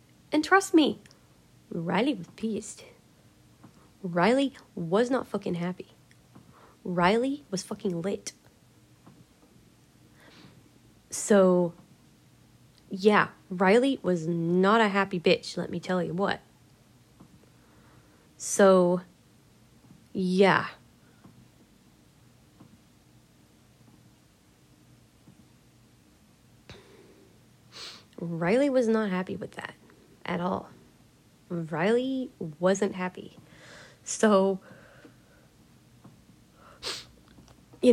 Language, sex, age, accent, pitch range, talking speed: English, female, 20-39, American, 170-205 Hz, 70 wpm